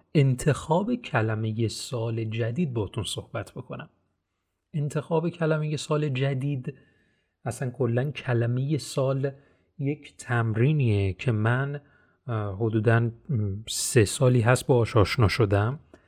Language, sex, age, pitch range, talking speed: Persian, male, 30-49, 115-165 Hz, 95 wpm